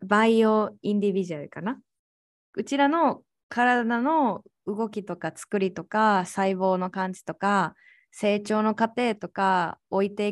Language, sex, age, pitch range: Japanese, female, 20-39, 190-260 Hz